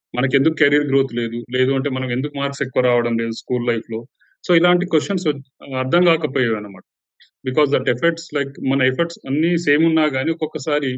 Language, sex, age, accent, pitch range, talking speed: Telugu, male, 30-49, native, 120-145 Hz, 170 wpm